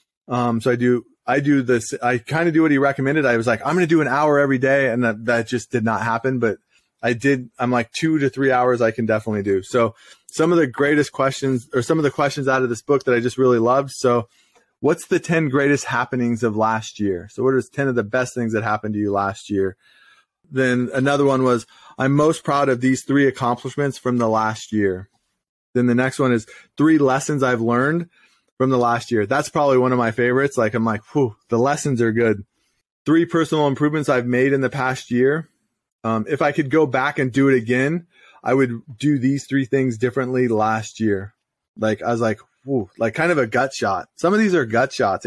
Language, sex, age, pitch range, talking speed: English, male, 20-39, 120-140 Hz, 230 wpm